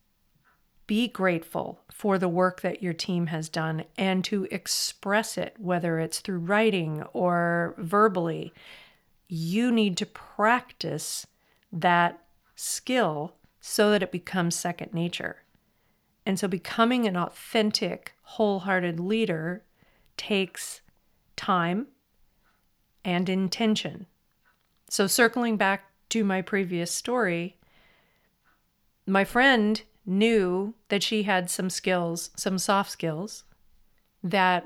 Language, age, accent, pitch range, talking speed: English, 40-59, American, 170-210 Hz, 105 wpm